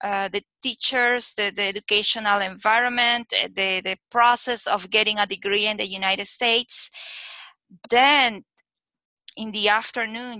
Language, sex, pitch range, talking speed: English, female, 195-230 Hz, 125 wpm